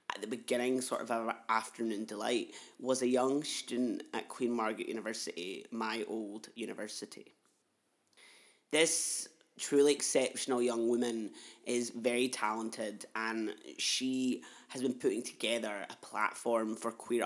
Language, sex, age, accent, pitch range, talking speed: English, male, 30-49, British, 110-125 Hz, 130 wpm